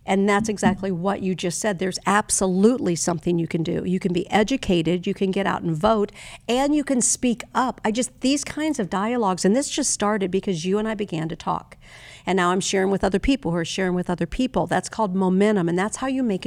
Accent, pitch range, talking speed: American, 175-210 Hz, 240 wpm